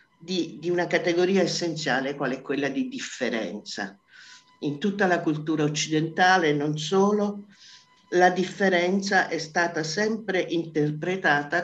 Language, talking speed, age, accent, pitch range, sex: Italian, 120 wpm, 50-69, native, 150-185 Hz, male